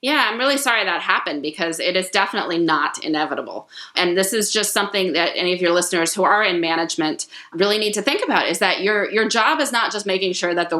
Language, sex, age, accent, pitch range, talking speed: English, female, 30-49, American, 170-220 Hz, 240 wpm